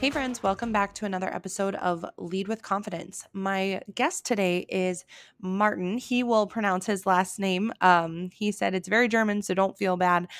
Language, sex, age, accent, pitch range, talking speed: English, female, 20-39, American, 180-215 Hz, 185 wpm